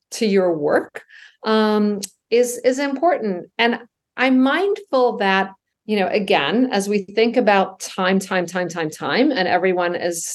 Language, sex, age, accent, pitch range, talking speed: English, female, 50-69, American, 190-275 Hz, 150 wpm